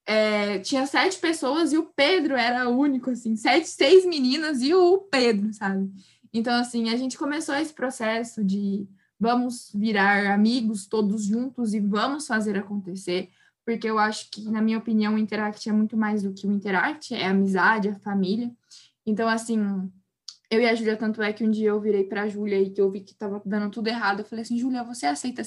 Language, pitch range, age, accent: Portuguese, 205-240 Hz, 10-29, Brazilian